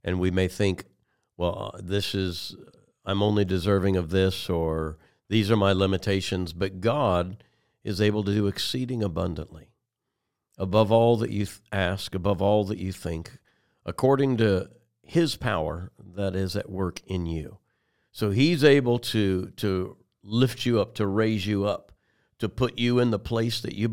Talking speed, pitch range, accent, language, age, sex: 165 wpm, 95-115 Hz, American, English, 60-79, male